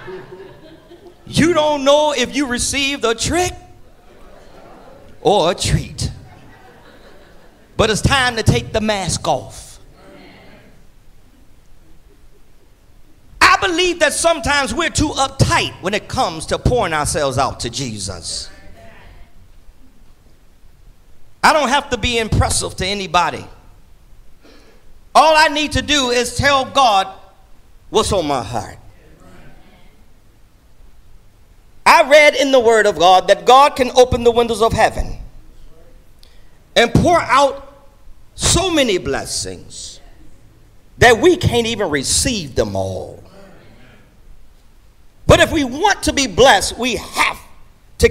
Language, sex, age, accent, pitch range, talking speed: English, male, 40-59, American, 205-310 Hz, 115 wpm